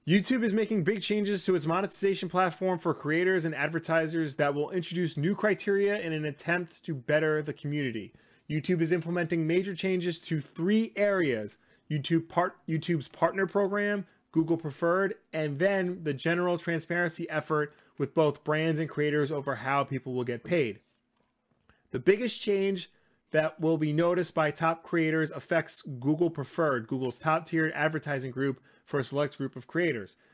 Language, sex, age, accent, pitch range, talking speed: English, male, 30-49, American, 145-185 Hz, 155 wpm